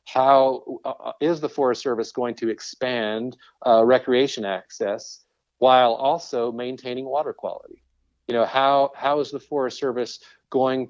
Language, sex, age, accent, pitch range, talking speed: English, male, 40-59, American, 115-135 Hz, 145 wpm